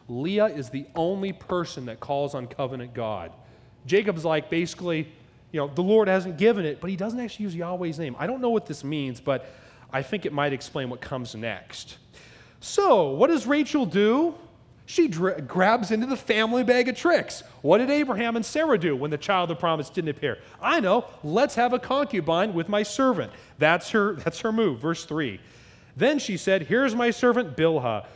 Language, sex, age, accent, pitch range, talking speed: English, male, 30-49, American, 135-215 Hz, 200 wpm